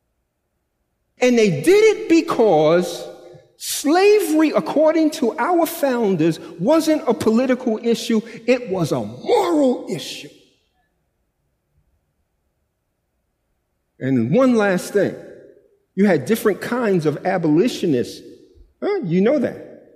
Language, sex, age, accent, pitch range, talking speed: English, male, 50-69, American, 185-285 Hz, 100 wpm